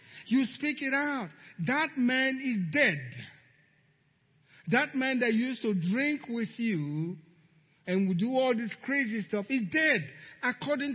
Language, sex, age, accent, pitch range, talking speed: English, male, 50-69, Nigerian, 160-235 Hz, 140 wpm